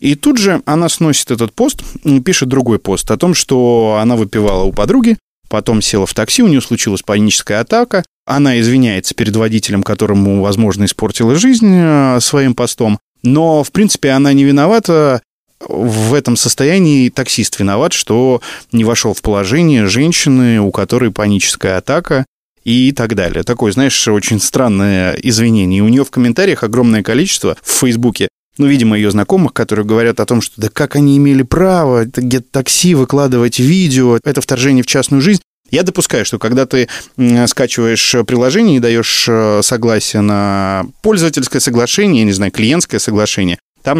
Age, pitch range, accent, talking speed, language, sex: 20-39, 105-140 Hz, native, 155 wpm, Russian, male